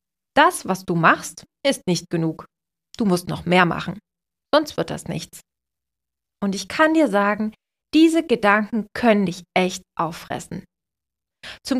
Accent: German